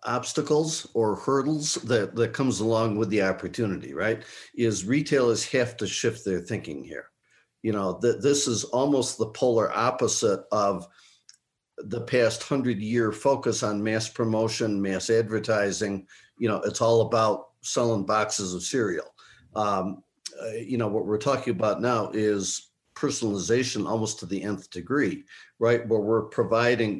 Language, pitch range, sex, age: English, 105-125 Hz, male, 50-69